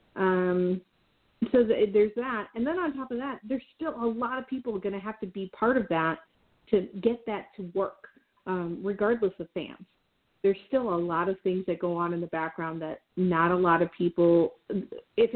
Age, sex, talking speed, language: 30-49, female, 205 wpm, English